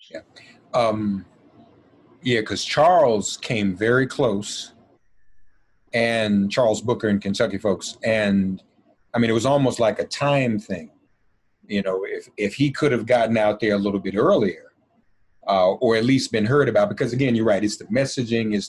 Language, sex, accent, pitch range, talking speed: English, male, American, 105-135 Hz, 170 wpm